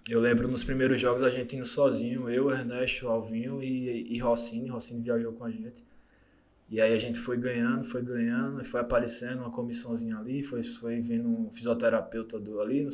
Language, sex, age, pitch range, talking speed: Portuguese, male, 20-39, 120-140 Hz, 190 wpm